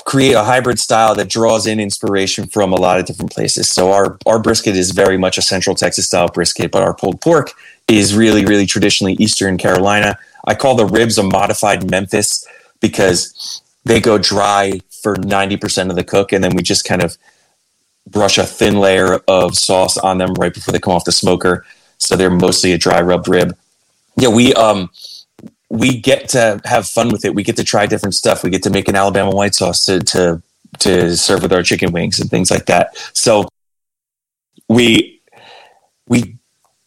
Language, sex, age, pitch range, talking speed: English, male, 30-49, 95-110 Hz, 195 wpm